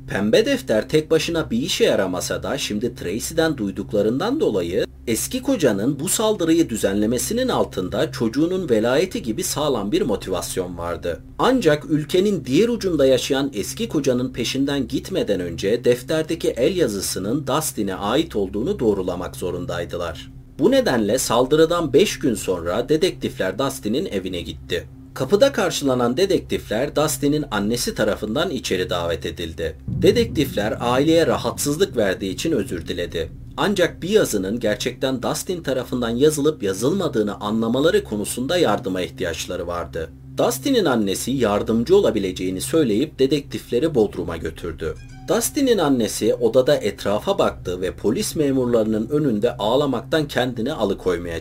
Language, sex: Turkish, male